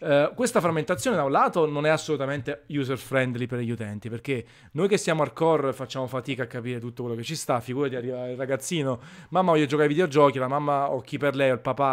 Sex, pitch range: male, 125-155 Hz